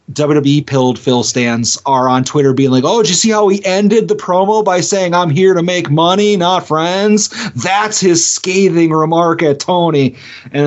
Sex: male